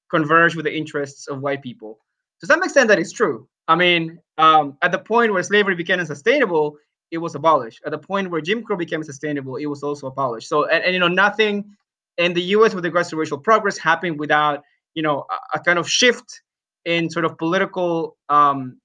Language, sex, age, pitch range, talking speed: English, male, 20-39, 150-180 Hz, 210 wpm